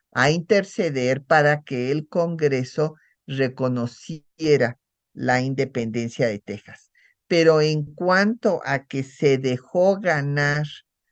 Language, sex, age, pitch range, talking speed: Spanish, male, 50-69, 135-165 Hz, 105 wpm